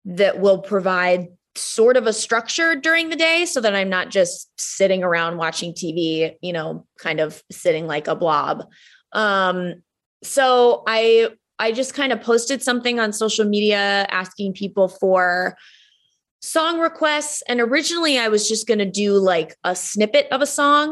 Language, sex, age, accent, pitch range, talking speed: English, female, 20-39, American, 185-240 Hz, 165 wpm